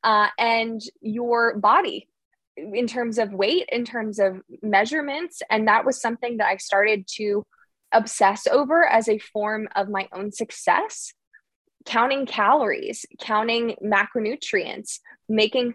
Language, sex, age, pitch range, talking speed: English, female, 20-39, 195-235 Hz, 130 wpm